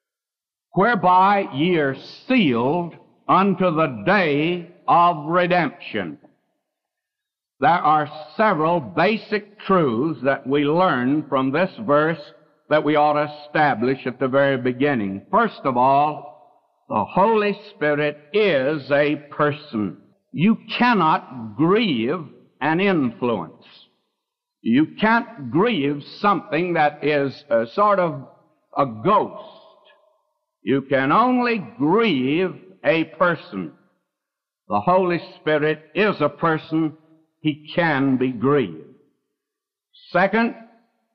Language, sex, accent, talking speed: English, male, American, 105 wpm